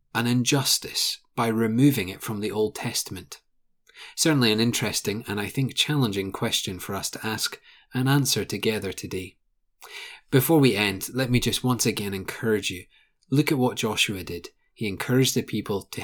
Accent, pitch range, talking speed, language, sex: British, 100-130 Hz, 170 wpm, English, male